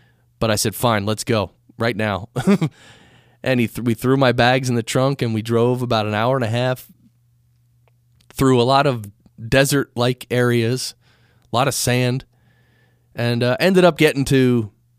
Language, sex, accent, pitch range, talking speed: English, male, American, 115-140 Hz, 165 wpm